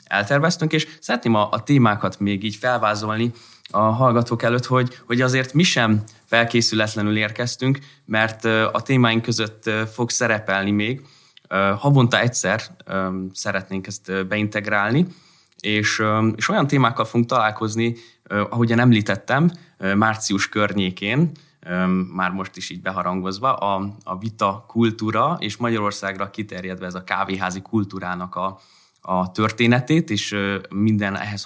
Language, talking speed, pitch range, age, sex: Hungarian, 120 wpm, 100-120 Hz, 20-39, male